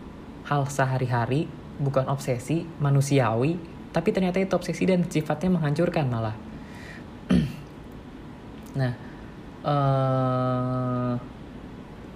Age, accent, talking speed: 20-39, native, 75 wpm